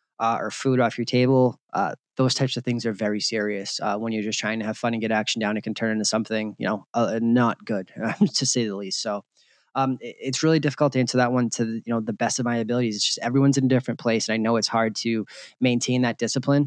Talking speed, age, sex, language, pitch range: 265 wpm, 20-39, male, English, 115-135 Hz